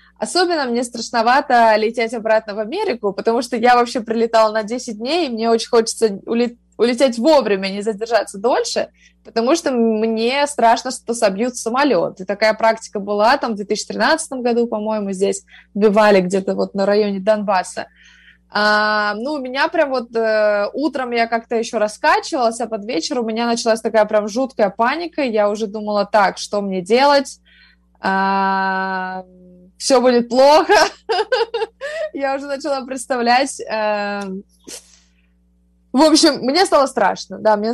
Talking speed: 145 wpm